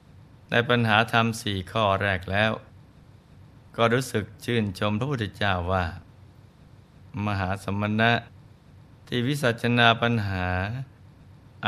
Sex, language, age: male, Thai, 20-39